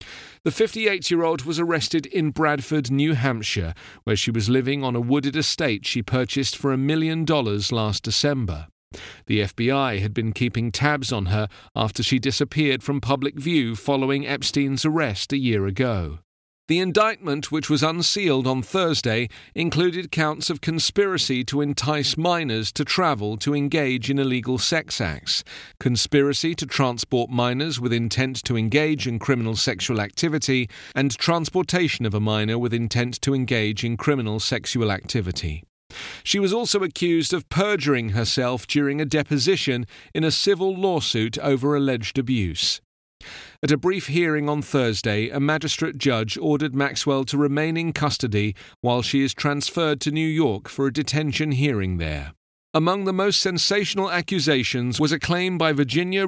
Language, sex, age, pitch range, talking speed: English, male, 40-59, 115-155 Hz, 155 wpm